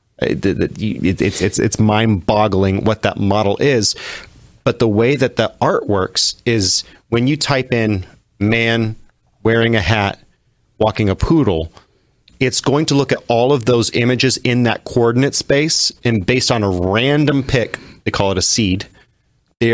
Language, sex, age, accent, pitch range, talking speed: English, male, 30-49, American, 100-125 Hz, 160 wpm